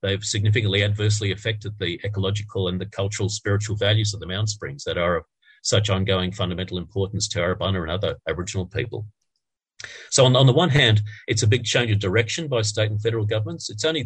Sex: male